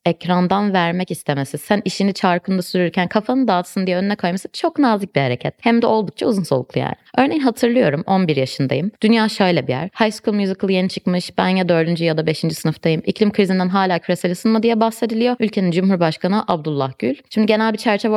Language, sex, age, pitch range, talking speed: Turkish, female, 20-39, 170-220 Hz, 190 wpm